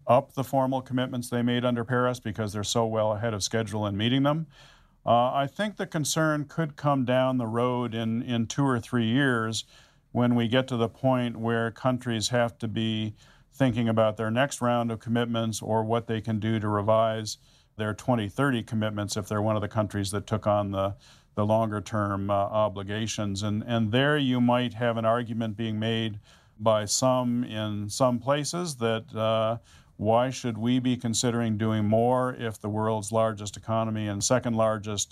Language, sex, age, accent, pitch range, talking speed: English, male, 50-69, American, 110-125 Hz, 185 wpm